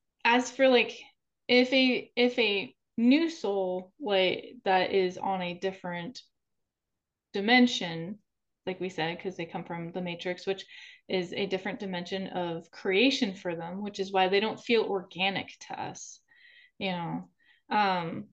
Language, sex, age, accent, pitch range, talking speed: English, female, 20-39, American, 180-245 Hz, 150 wpm